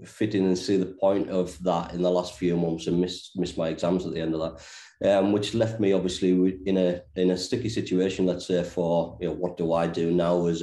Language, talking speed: English, 255 wpm